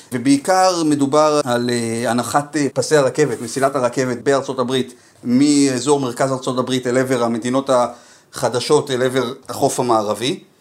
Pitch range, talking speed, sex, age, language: 120-150 Hz, 125 wpm, male, 30-49, Hebrew